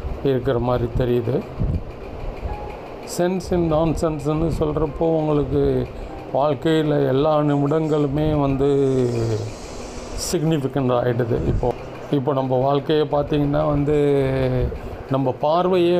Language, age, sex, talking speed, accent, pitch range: Tamil, 40-59, male, 85 wpm, native, 125-150 Hz